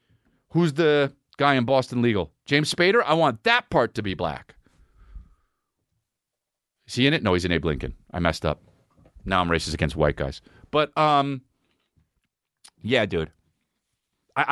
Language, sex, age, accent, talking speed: English, male, 40-59, American, 155 wpm